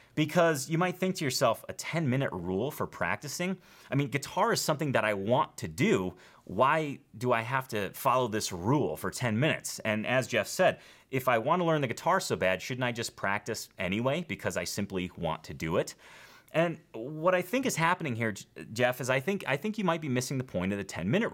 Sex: male